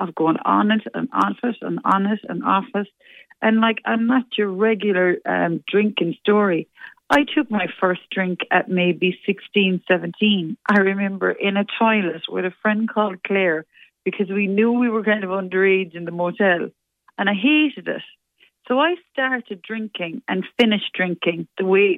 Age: 40-59